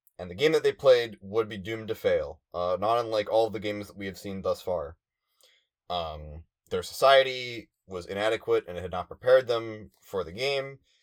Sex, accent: male, American